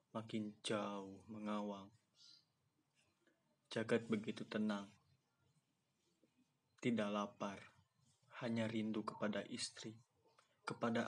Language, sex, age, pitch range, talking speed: Indonesian, male, 20-39, 105-120 Hz, 70 wpm